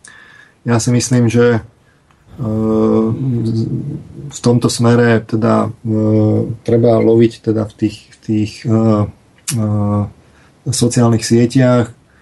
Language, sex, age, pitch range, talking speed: Slovak, male, 30-49, 110-115 Hz, 85 wpm